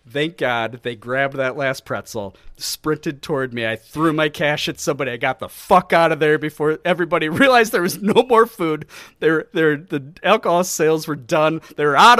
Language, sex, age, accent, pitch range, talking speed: English, male, 40-59, American, 130-180 Hz, 210 wpm